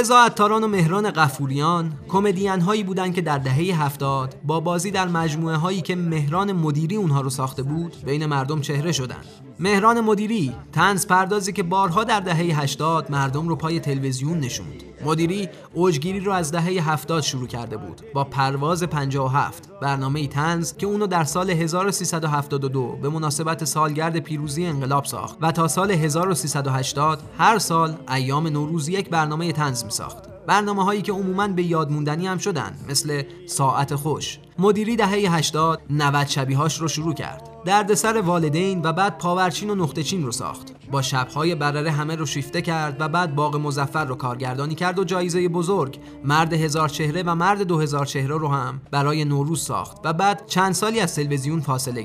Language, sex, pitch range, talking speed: Persian, male, 145-185 Hz, 165 wpm